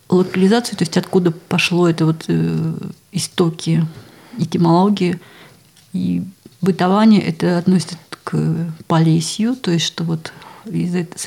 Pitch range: 165-200 Hz